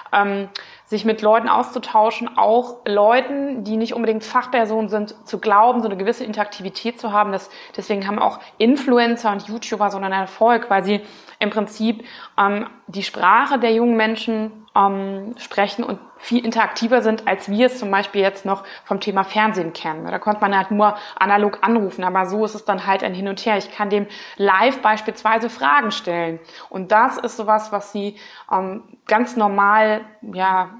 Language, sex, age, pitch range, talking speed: German, female, 20-39, 195-225 Hz, 175 wpm